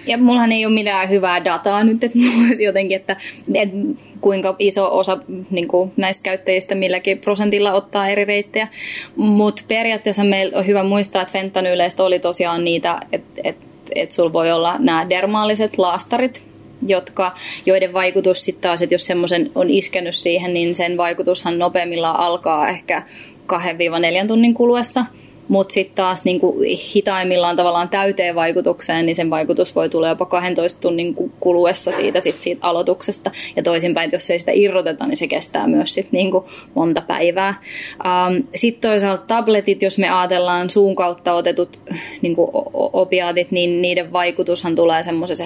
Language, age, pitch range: Finnish, 20-39, 175-200 Hz